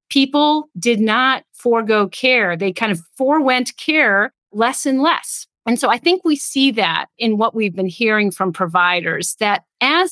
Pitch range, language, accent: 185-255 Hz, English, American